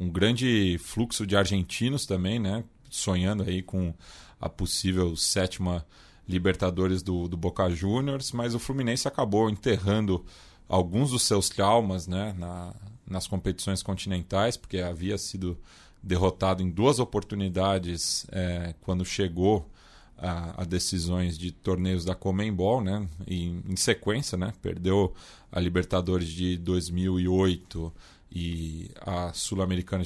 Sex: male